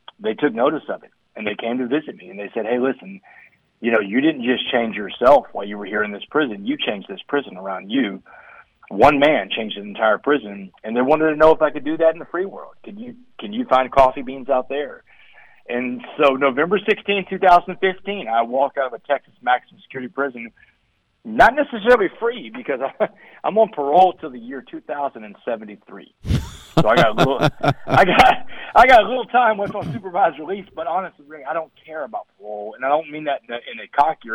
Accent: American